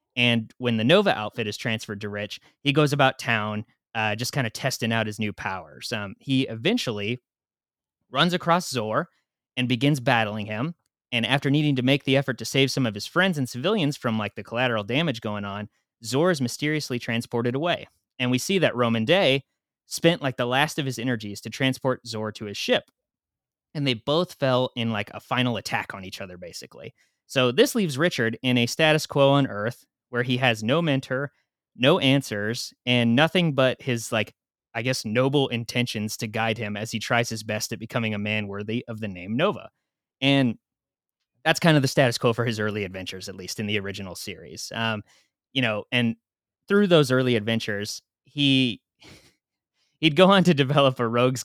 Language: English